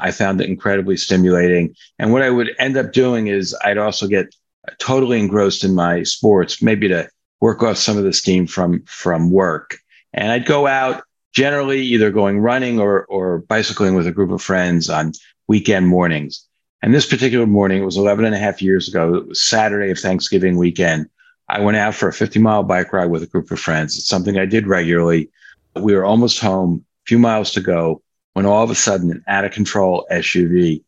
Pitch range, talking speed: 90-110 Hz, 200 wpm